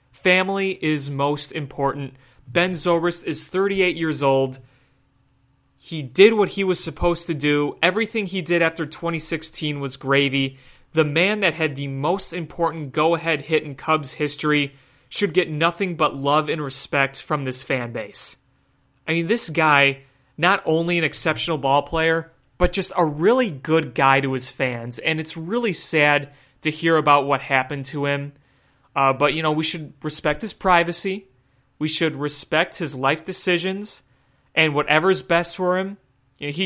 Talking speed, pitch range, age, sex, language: 165 wpm, 140-180 Hz, 30-49, male, English